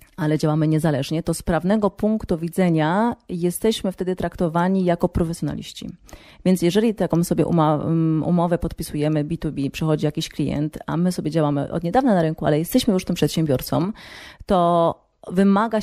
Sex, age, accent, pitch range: female, 30-49, native, 155-185 Hz